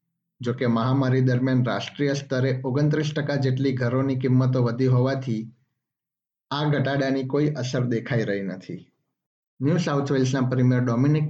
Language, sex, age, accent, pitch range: Gujarati, male, 50-69, native, 125-145 Hz